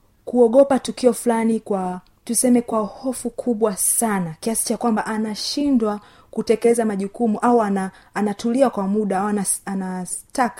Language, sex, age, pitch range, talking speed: Swahili, female, 30-49, 185-235 Hz, 125 wpm